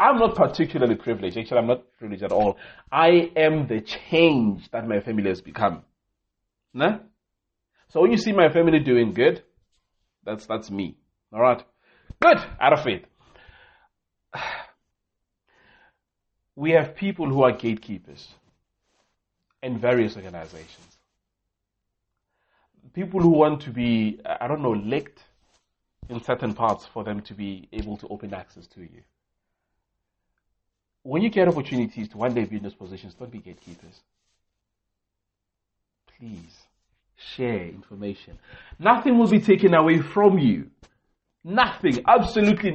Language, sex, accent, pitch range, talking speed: English, male, South African, 105-165 Hz, 130 wpm